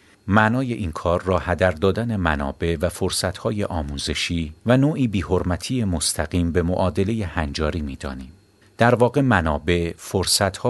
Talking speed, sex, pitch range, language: 125 wpm, male, 80-110 Hz, Persian